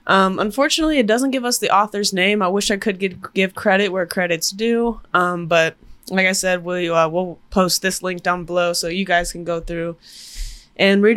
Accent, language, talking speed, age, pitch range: American, English, 205 wpm, 20-39, 170-205 Hz